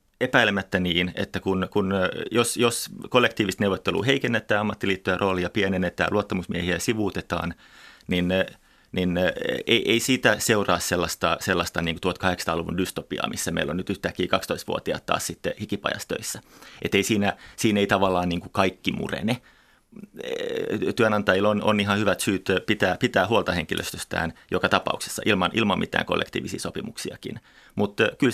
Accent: native